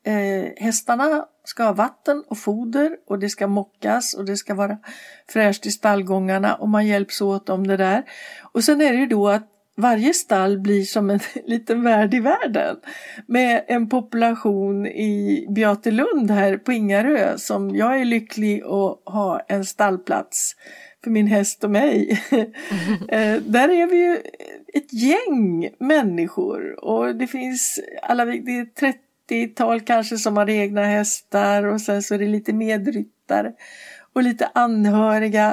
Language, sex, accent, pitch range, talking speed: English, female, Swedish, 200-255 Hz, 160 wpm